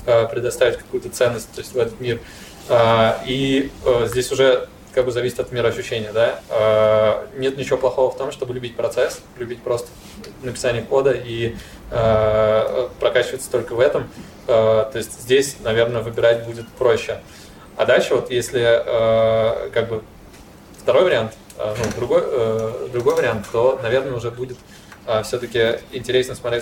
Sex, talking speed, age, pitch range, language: male, 135 wpm, 20-39, 110-130 Hz, Russian